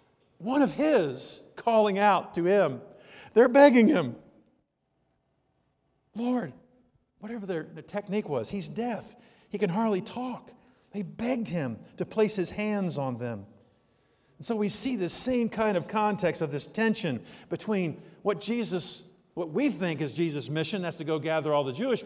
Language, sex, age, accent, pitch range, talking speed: English, male, 50-69, American, 150-210 Hz, 160 wpm